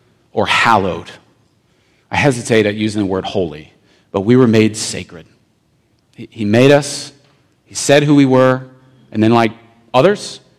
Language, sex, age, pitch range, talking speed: English, male, 40-59, 105-125 Hz, 145 wpm